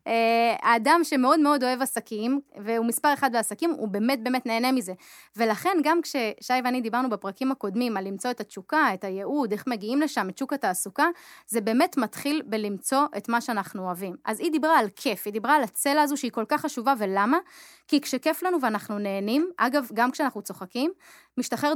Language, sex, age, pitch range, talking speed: Hebrew, female, 20-39, 220-300 Hz, 180 wpm